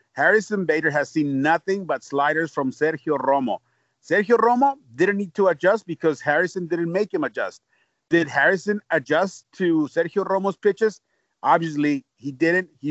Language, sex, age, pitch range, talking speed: English, male, 40-59, 150-195 Hz, 155 wpm